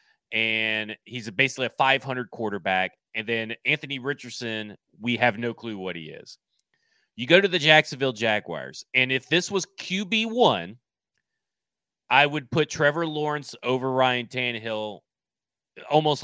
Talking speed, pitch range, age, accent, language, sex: 145 wpm, 115-155 Hz, 30-49, American, English, male